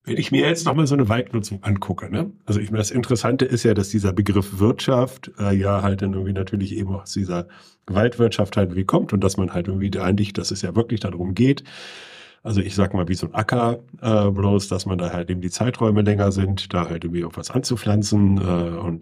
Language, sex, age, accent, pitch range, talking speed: German, male, 50-69, German, 95-115 Hz, 235 wpm